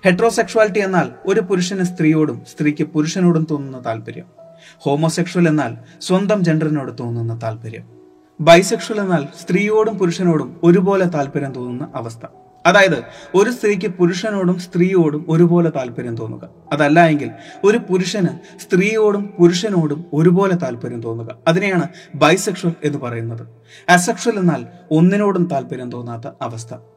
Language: Malayalam